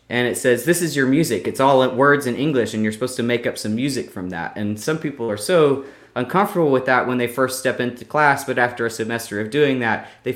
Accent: American